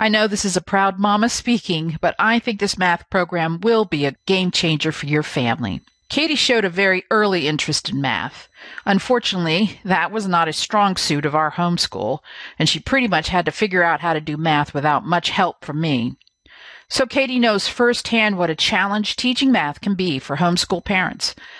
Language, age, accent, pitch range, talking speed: English, 50-69, American, 170-230 Hz, 195 wpm